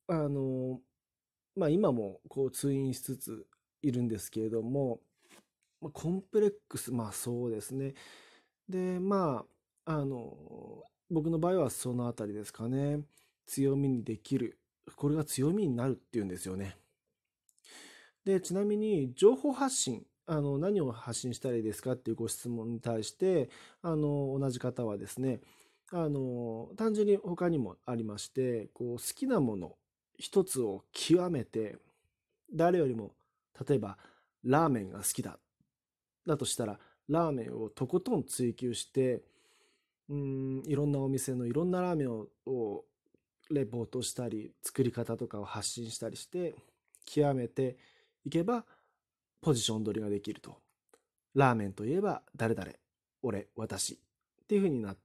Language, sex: Japanese, male